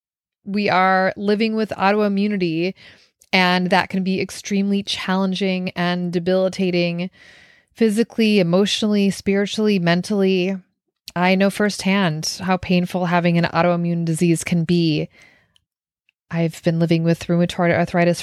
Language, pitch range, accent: English, 175-205 Hz, American